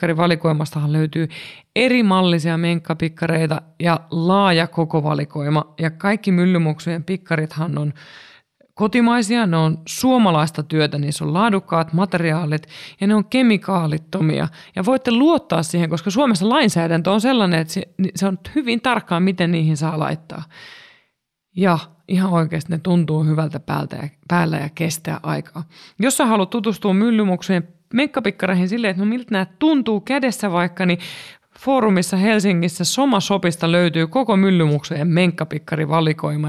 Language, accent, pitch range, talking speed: Finnish, native, 160-200 Hz, 130 wpm